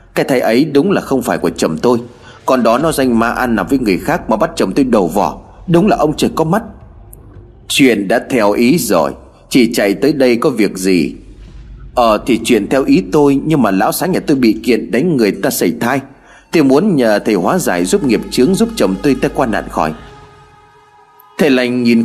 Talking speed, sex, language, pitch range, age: 225 wpm, male, Vietnamese, 105-160 Hz, 30-49